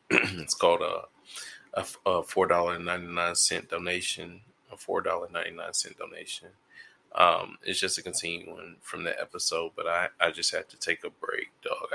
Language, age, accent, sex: English, 20-39, American, male